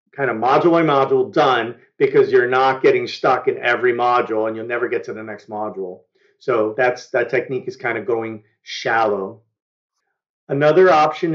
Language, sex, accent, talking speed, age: English, male, American, 175 wpm, 40-59